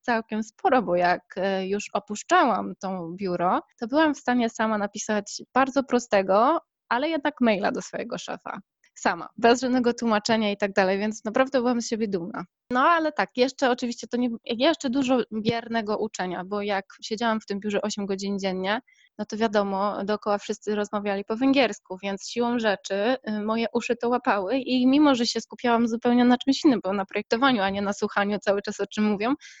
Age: 20-39